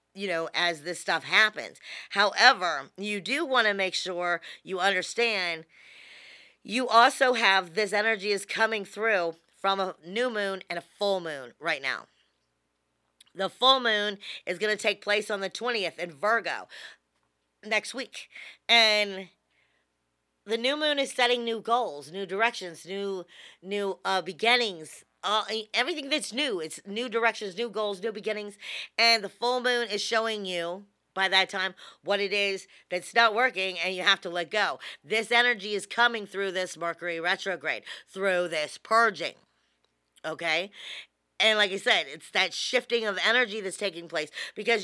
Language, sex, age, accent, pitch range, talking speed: English, female, 40-59, American, 175-225 Hz, 160 wpm